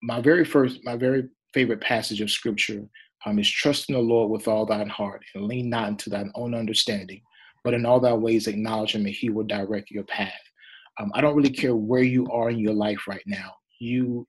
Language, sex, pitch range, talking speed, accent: English, male, 110-125 Hz, 220 wpm, American